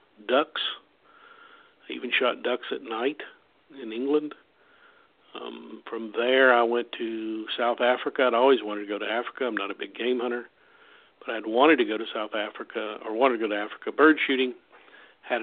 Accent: American